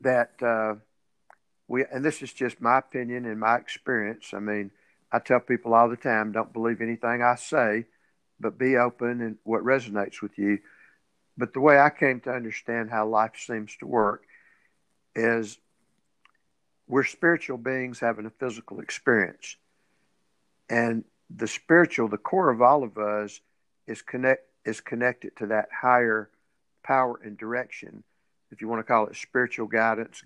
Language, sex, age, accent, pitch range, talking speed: English, male, 60-79, American, 110-130 Hz, 160 wpm